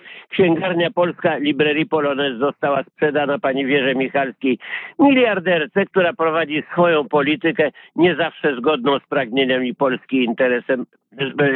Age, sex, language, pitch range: 50-69, male, Polish, 145-185 Hz